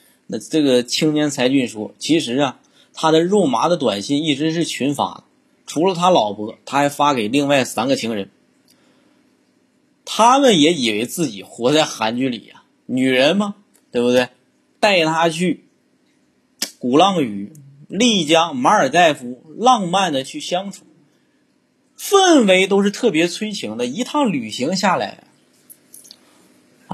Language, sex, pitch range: Chinese, male, 145-230 Hz